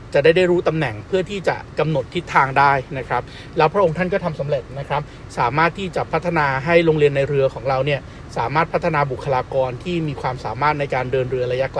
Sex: male